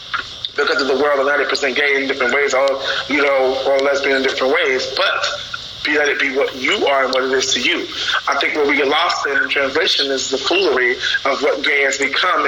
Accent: American